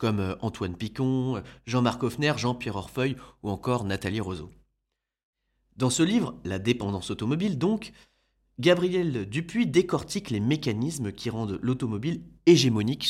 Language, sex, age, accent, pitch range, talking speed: French, male, 30-49, French, 105-140 Hz, 125 wpm